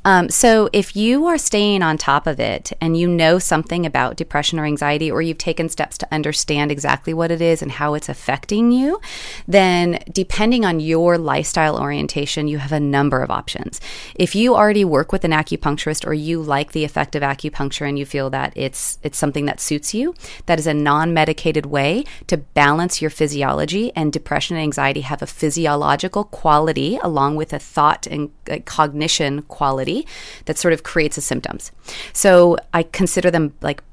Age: 30-49